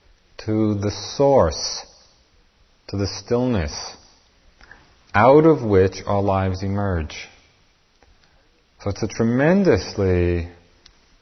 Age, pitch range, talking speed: 40-59, 90-115 Hz, 85 wpm